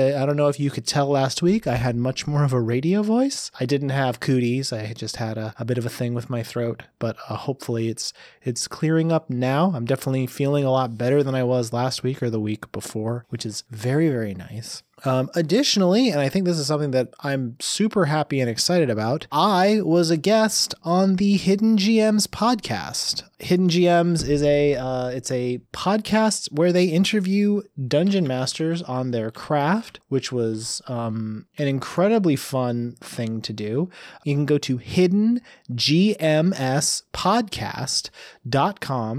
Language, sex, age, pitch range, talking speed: English, male, 30-49, 120-180 Hz, 175 wpm